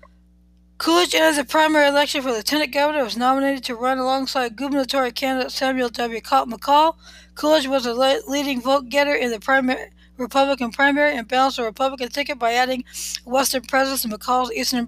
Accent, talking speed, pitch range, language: American, 165 wpm, 245-280 Hz, English